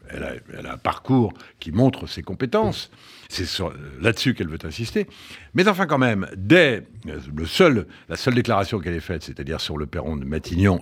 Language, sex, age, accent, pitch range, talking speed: French, male, 60-79, French, 100-140 Hz, 185 wpm